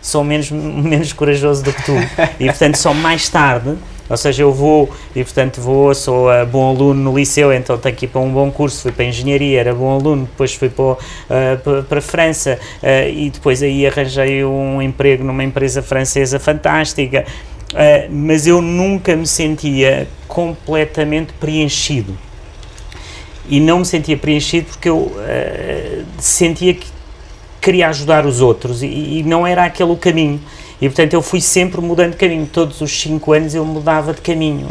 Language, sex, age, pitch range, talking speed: Portuguese, male, 30-49, 125-155 Hz, 180 wpm